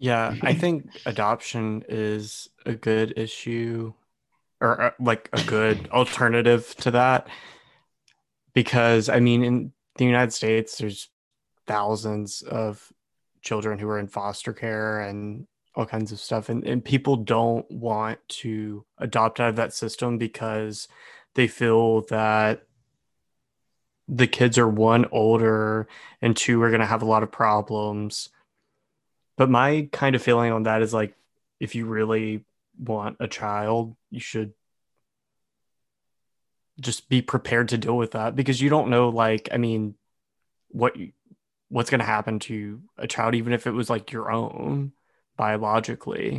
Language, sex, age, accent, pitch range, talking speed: English, male, 20-39, American, 110-120 Hz, 145 wpm